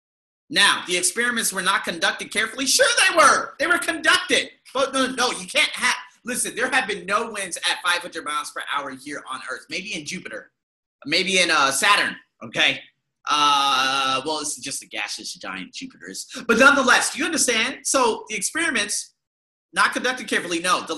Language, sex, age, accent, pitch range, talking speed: English, male, 30-49, American, 200-275 Hz, 185 wpm